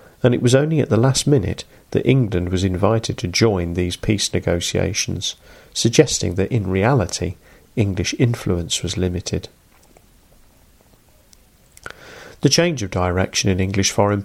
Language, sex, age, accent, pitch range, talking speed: English, male, 40-59, British, 95-120 Hz, 135 wpm